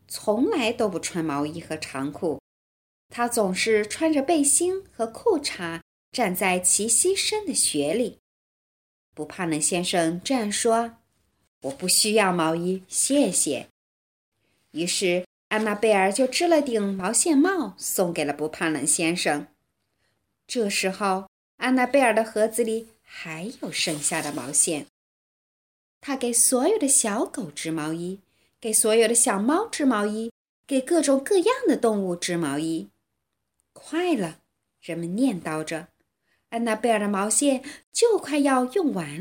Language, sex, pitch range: Chinese, female, 170-275 Hz